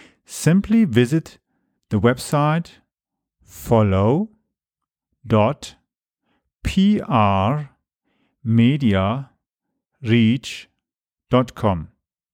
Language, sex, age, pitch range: English, male, 40-59, 110-150 Hz